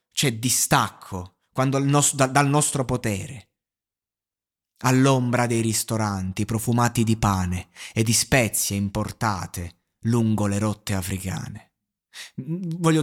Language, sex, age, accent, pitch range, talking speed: Italian, male, 20-39, native, 105-140 Hz, 100 wpm